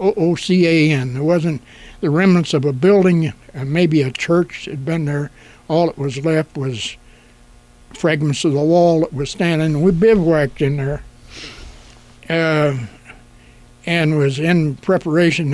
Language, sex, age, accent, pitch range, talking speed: English, male, 60-79, American, 135-175 Hz, 140 wpm